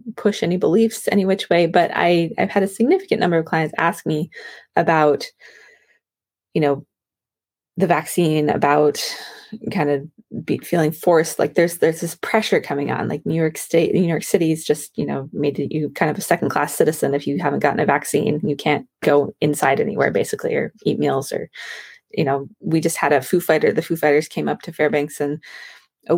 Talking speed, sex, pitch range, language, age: 200 wpm, female, 150-185 Hz, English, 20-39